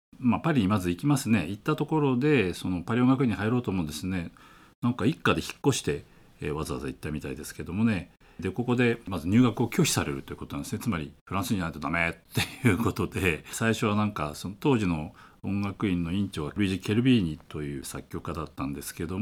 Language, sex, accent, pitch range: Japanese, male, native, 85-125 Hz